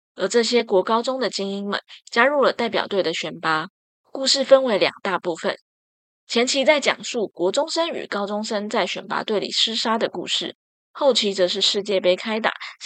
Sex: female